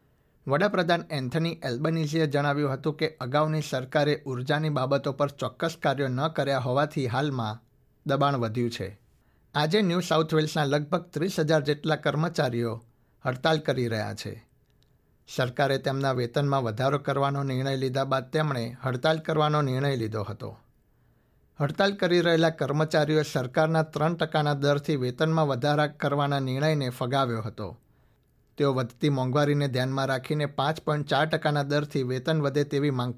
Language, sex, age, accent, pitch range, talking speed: Gujarati, male, 60-79, native, 130-155 Hz, 130 wpm